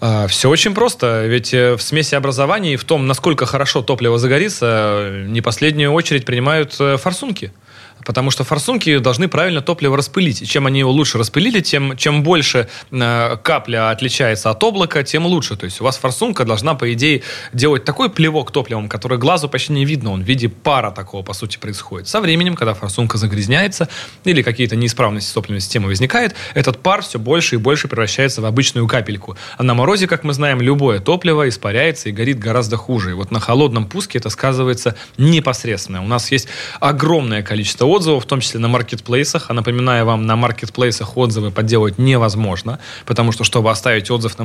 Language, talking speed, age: Russian, 180 wpm, 20-39